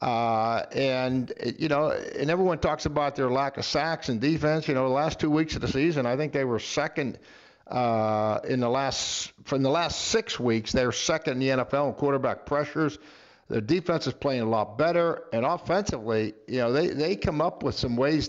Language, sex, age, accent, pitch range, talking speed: English, male, 60-79, American, 125-160 Hz, 205 wpm